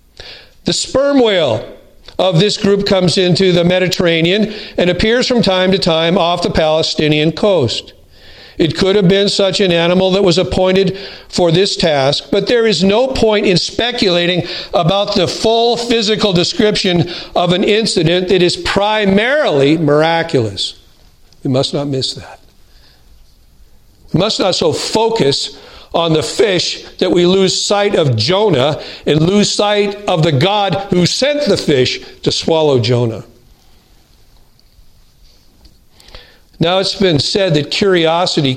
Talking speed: 140 wpm